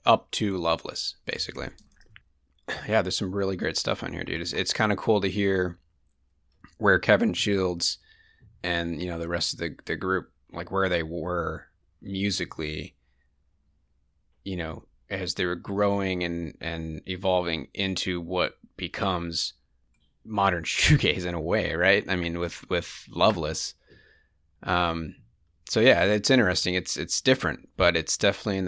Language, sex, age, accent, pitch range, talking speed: English, male, 30-49, American, 80-100 Hz, 150 wpm